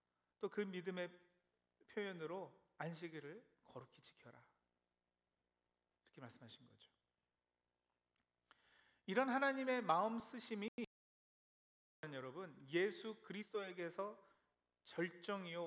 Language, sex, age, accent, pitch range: Korean, male, 40-59, native, 135-210 Hz